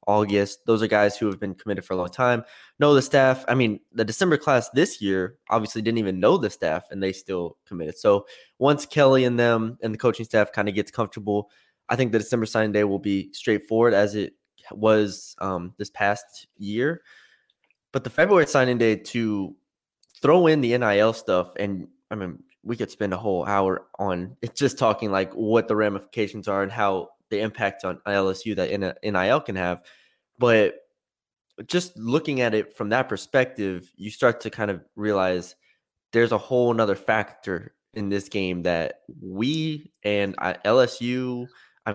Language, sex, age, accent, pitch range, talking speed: English, male, 20-39, American, 100-125 Hz, 180 wpm